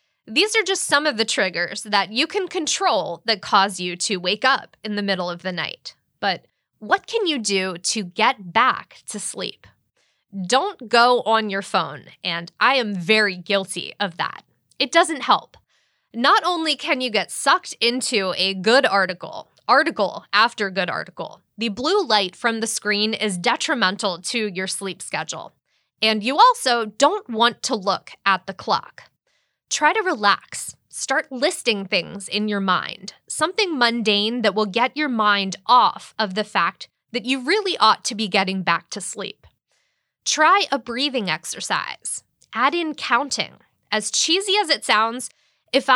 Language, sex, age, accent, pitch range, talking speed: English, female, 20-39, American, 200-275 Hz, 165 wpm